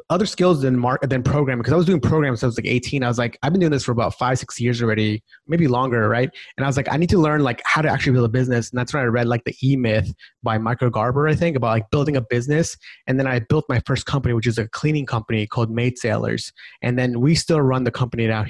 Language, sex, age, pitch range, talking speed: English, male, 20-39, 120-150 Hz, 285 wpm